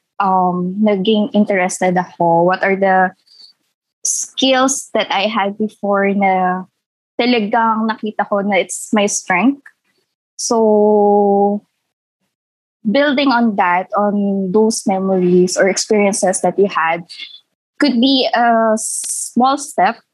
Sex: female